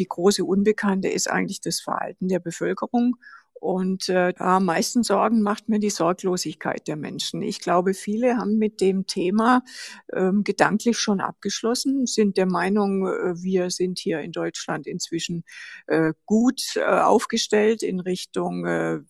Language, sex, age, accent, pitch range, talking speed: German, female, 50-69, German, 175-215 Hz, 150 wpm